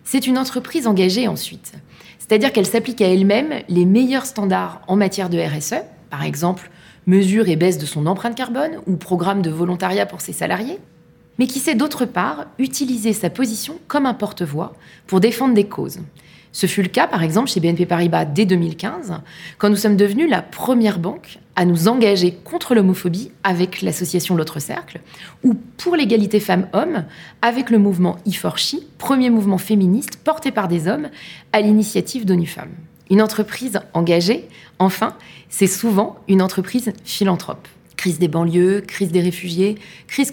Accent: French